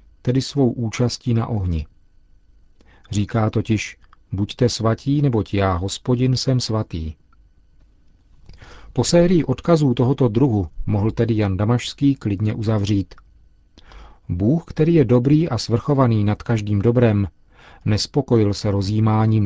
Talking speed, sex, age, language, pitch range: 115 wpm, male, 40-59, Czech, 95-120 Hz